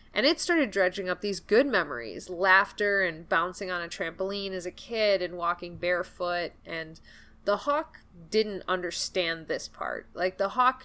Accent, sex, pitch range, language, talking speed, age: American, female, 170-200 Hz, English, 165 wpm, 20-39